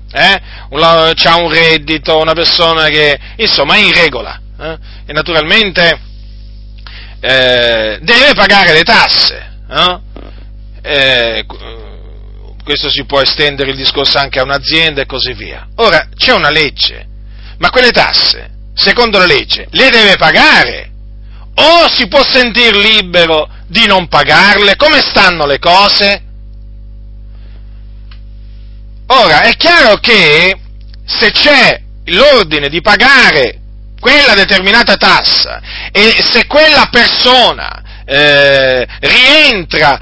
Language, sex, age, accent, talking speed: Italian, male, 40-59, native, 115 wpm